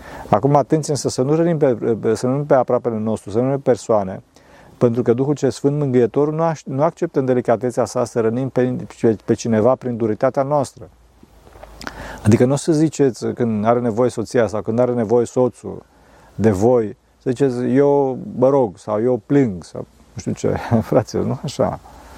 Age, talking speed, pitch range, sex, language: 40-59, 185 wpm, 110-145 Hz, male, Romanian